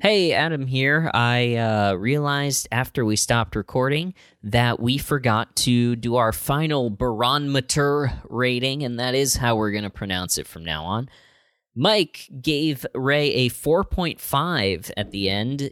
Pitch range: 110-145 Hz